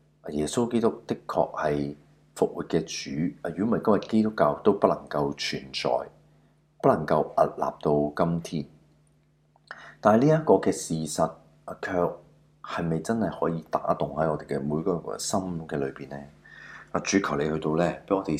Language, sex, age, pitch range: Chinese, male, 30-49, 75-100 Hz